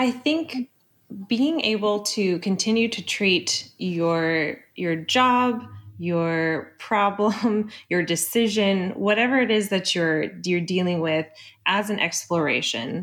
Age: 20-39